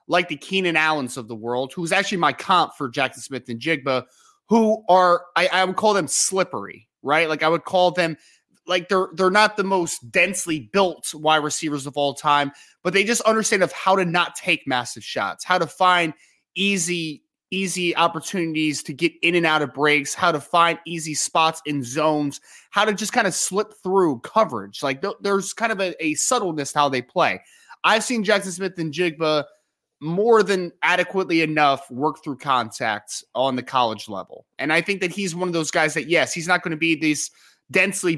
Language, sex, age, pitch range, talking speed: English, male, 20-39, 150-190 Hz, 205 wpm